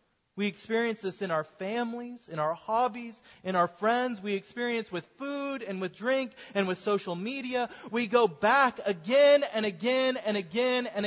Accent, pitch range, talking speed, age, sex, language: American, 185-250 Hz, 175 wpm, 30-49, male, English